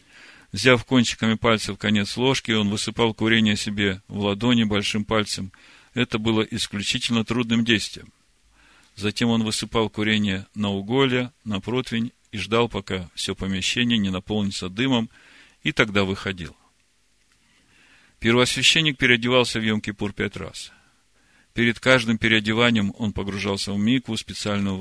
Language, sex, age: Russian, male, 40-59